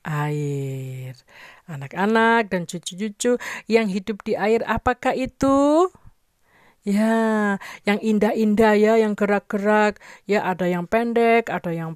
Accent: native